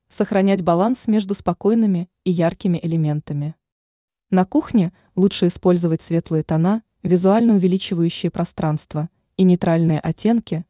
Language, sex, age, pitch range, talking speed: Russian, female, 20-39, 165-205 Hz, 105 wpm